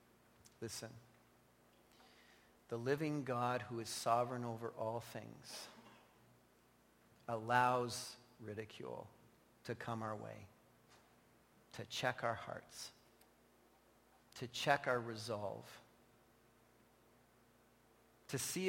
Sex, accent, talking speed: male, American, 85 wpm